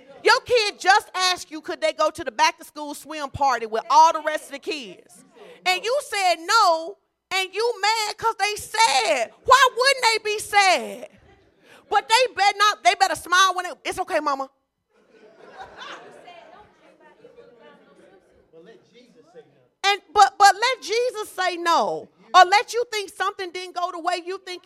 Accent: American